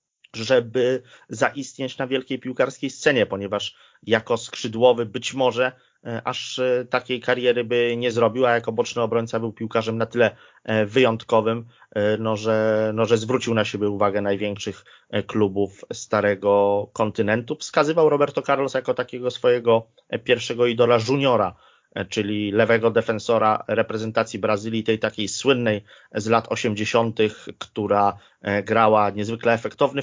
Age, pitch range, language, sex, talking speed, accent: 30-49, 105-120 Hz, Polish, male, 120 wpm, native